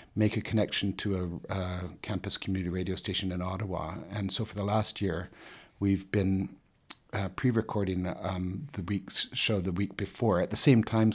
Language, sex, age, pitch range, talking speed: English, male, 60-79, 90-105 Hz, 180 wpm